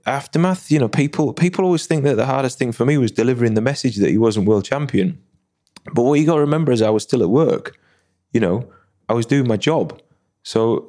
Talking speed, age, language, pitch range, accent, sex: 230 wpm, 20-39, English, 105-135 Hz, British, male